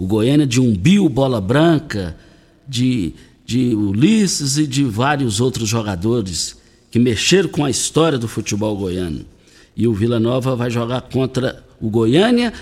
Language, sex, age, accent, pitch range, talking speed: Portuguese, male, 60-79, Brazilian, 115-155 Hz, 150 wpm